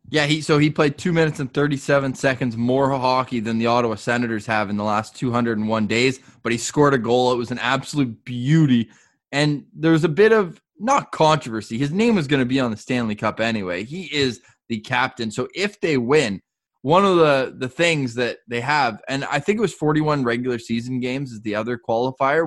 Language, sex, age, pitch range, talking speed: English, male, 20-39, 120-160 Hz, 215 wpm